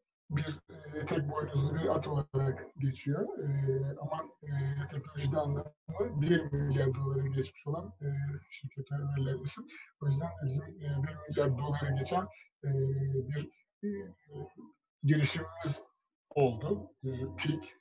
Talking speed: 120 wpm